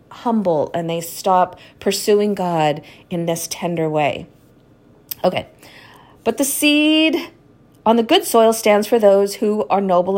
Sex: female